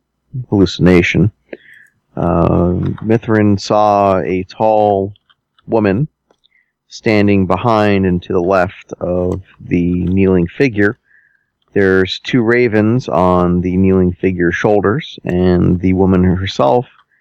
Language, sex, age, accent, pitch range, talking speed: English, male, 40-59, American, 90-110 Hz, 100 wpm